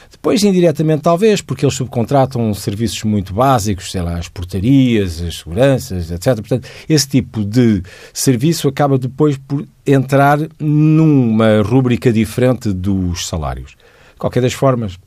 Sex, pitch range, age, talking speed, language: male, 105-160 Hz, 50-69, 135 wpm, Portuguese